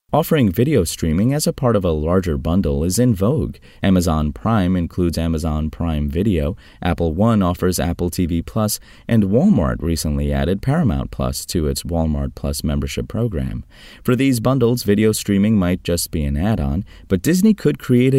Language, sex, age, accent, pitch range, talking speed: English, male, 30-49, American, 75-110 Hz, 165 wpm